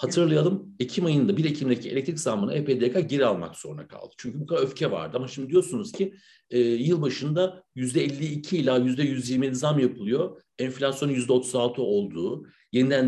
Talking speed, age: 145 wpm, 60-79